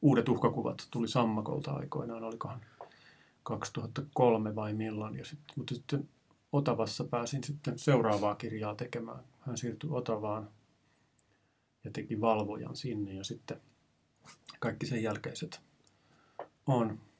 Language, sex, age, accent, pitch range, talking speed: Finnish, male, 30-49, native, 110-140 Hz, 110 wpm